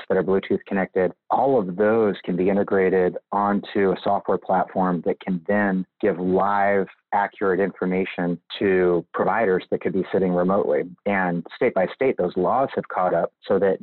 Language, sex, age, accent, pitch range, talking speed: English, male, 30-49, American, 90-100 Hz, 170 wpm